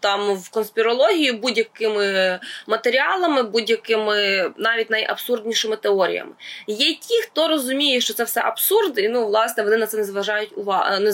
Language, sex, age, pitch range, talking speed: Ukrainian, female, 20-39, 220-300 Hz, 130 wpm